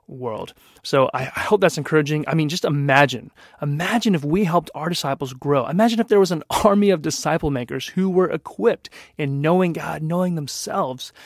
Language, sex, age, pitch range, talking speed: English, male, 30-49, 130-165 Hz, 180 wpm